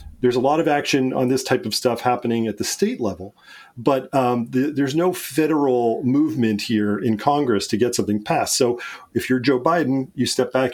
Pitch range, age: 110-135 Hz, 40-59